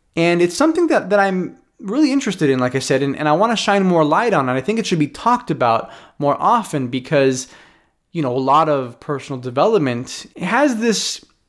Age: 20-39